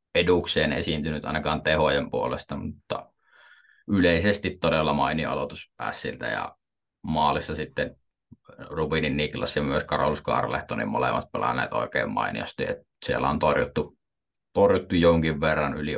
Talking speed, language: 120 wpm, Finnish